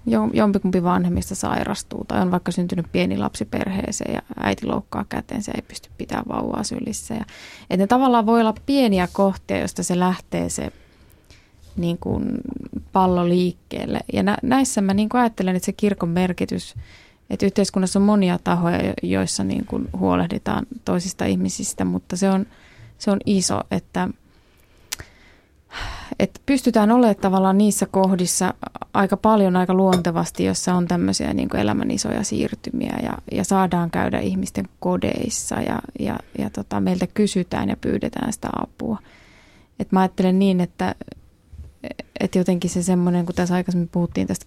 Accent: native